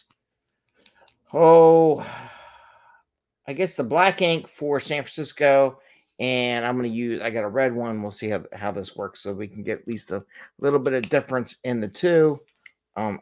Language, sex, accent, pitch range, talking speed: English, male, American, 115-150 Hz, 180 wpm